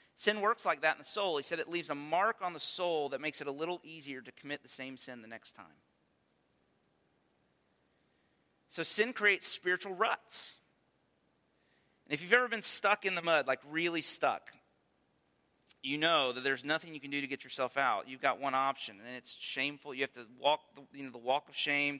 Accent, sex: American, male